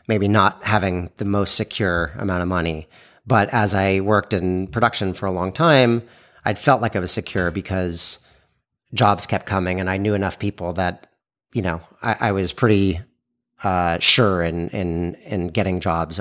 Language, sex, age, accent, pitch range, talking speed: English, male, 30-49, American, 90-110 Hz, 180 wpm